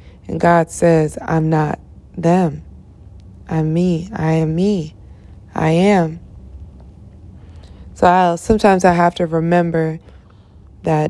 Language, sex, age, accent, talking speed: English, female, 20-39, American, 110 wpm